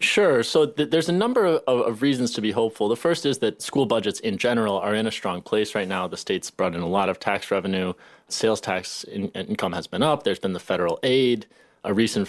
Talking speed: 235 wpm